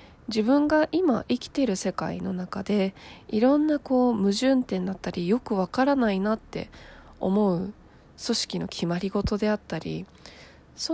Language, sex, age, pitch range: Japanese, female, 20-39, 175-245 Hz